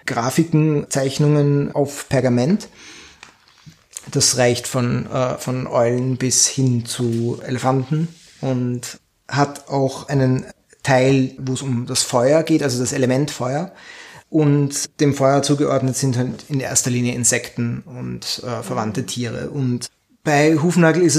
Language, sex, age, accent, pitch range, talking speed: German, male, 30-49, German, 125-145 Hz, 130 wpm